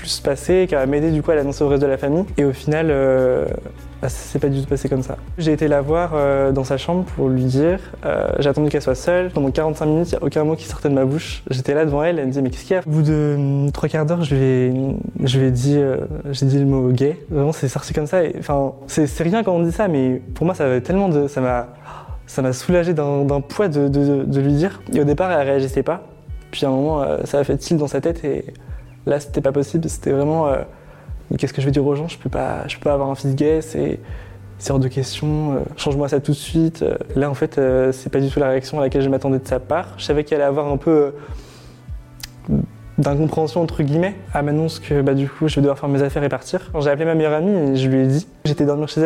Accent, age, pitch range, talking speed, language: French, 20-39, 135-155 Hz, 285 wpm, French